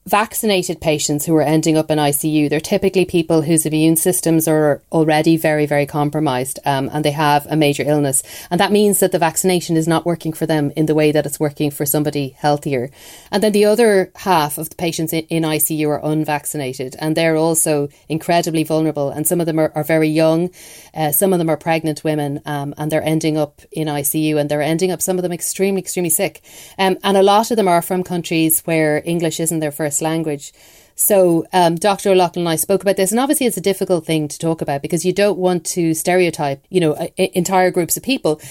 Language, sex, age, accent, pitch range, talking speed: English, female, 30-49, Irish, 155-185 Hz, 220 wpm